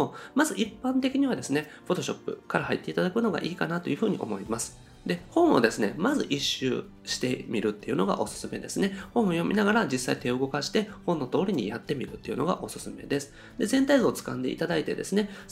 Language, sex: Japanese, male